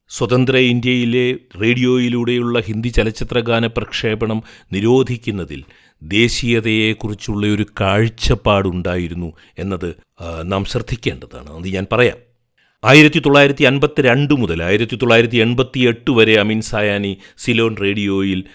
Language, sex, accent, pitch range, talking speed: Malayalam, male, native, 100-125 Hz, 80 wpm